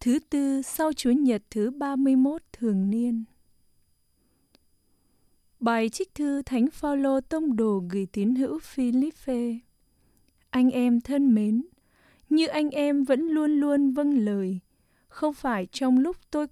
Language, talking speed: English, 145 wpm